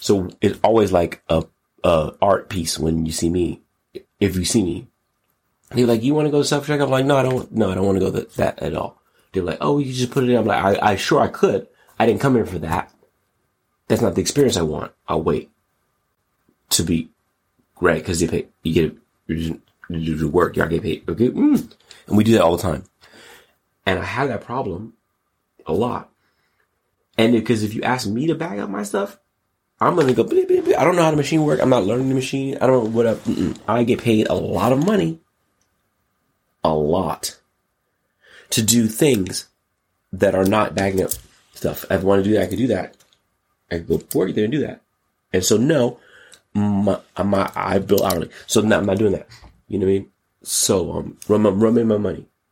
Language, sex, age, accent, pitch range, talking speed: English, male, 30-49, American, 95-125 Hz, 230 wpm